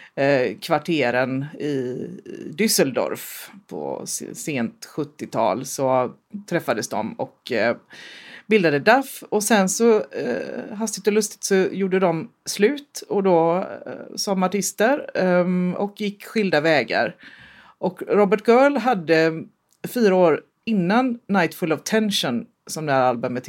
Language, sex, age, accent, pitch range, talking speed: Swedish, female, 40-59, native, 155-210 Hz, 110 wpm